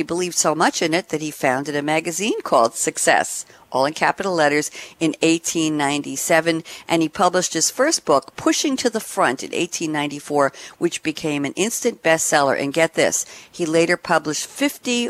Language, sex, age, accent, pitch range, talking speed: English, female, 50-69, American, 145-180 Hz, 170 wpm